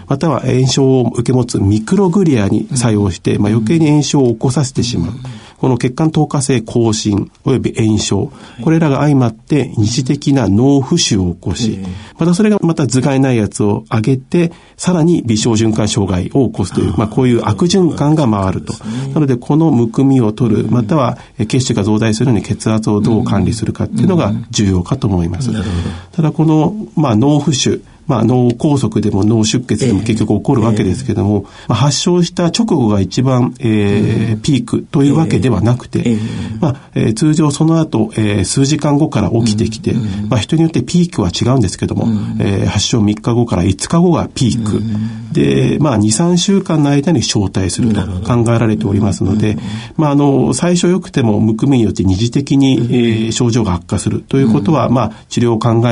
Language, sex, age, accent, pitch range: Japanese, male, 50-69, native, 105-140 Hz